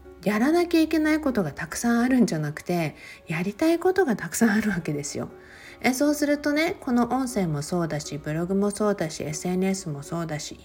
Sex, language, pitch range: female, Japanese, 160-250 Hz